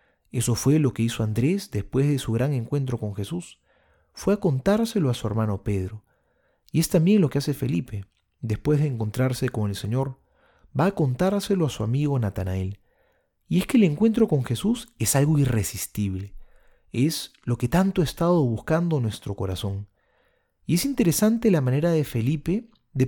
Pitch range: 110-170 Hz